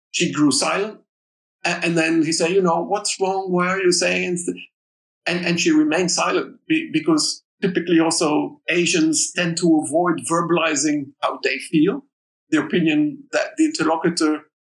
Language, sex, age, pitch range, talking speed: English, male, 50-69, 155-210 Hz, 145 wpm